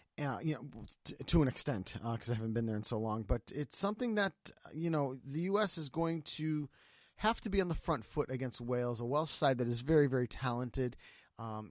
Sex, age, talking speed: male, 30-49, 230 wpm